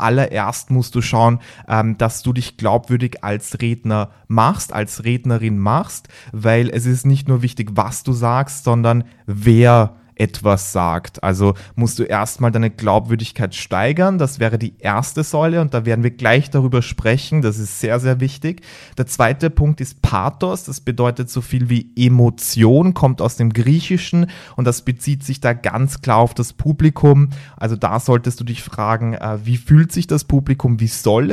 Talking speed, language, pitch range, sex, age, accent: 170 wpm, German, 110-135 Hz, male, 30-49, German